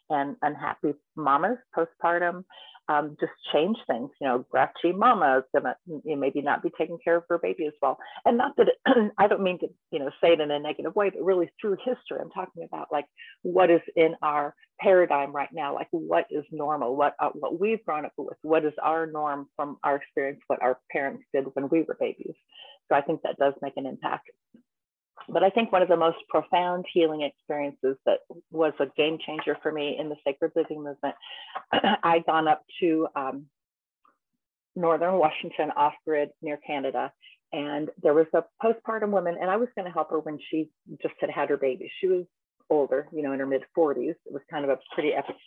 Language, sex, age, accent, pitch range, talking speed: English, female, 40-59, American, 145-185 Hz, 205 wpm